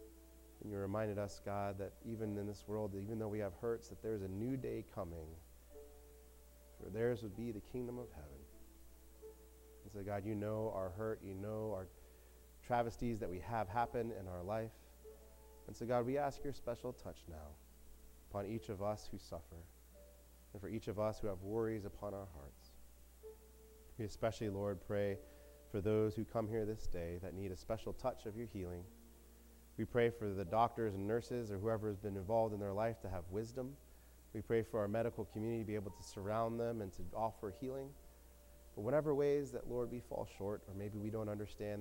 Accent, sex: American, male